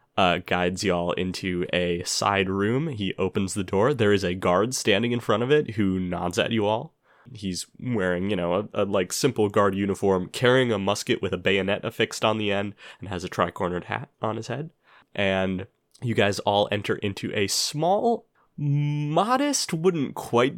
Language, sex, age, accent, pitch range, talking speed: English, male, 20-39, American, 95-120 Hz, 185 wpm